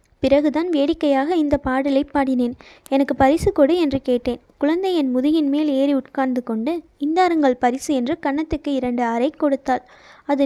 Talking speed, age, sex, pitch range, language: 145 wpm, 20-39, female, 265-310 Hz, Tamil